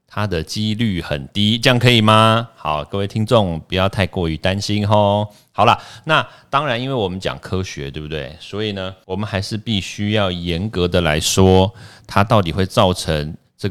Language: Chinese